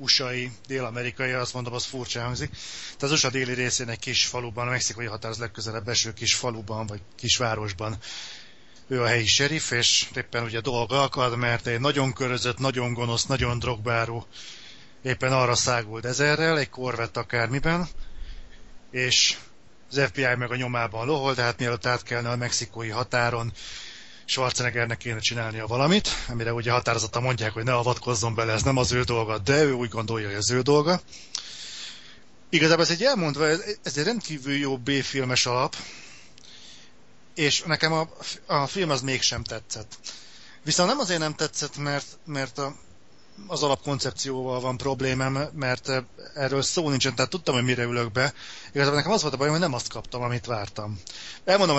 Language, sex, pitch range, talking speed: Hungarian, male, 120-140 Hz, 165 wpm